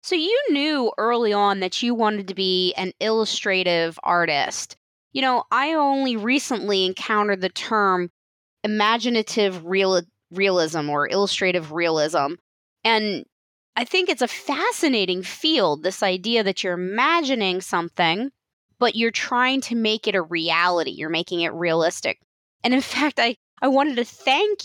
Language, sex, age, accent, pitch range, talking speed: English, female, 20-39, American, 190-265 Hz, 145 wpm